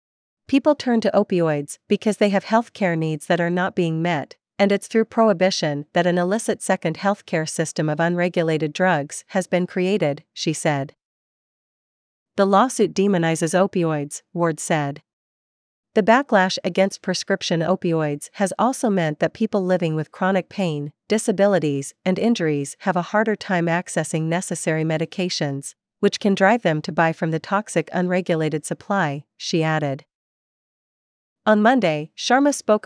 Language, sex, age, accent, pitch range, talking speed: English, female, 40-59, American, 160-200 Hz, 150 wpm